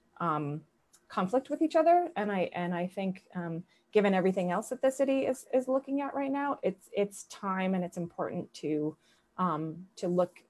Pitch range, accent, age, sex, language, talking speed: 170-205 Hz, American, 30-49, female, English, 190 wpm